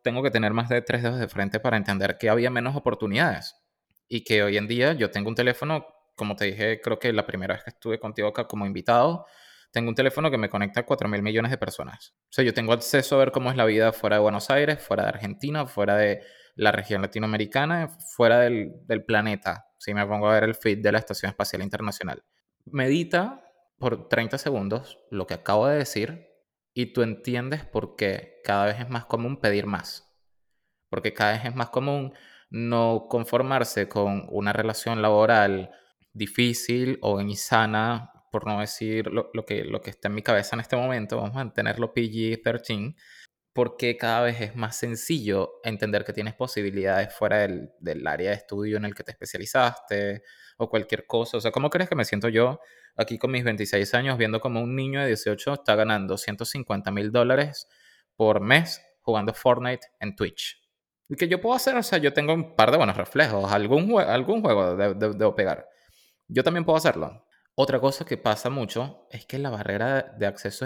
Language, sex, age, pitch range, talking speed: Spanish, male, 20-39, 105-130 Hz, 200 wpm